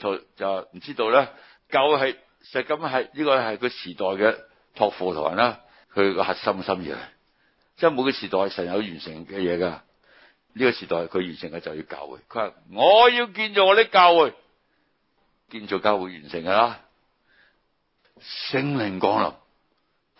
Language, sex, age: Chinese, male, 60-79